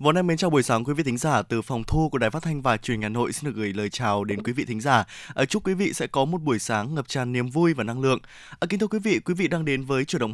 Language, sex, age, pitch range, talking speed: Vietnamese, male, 20-39, 120-170 Hz, 330 wpm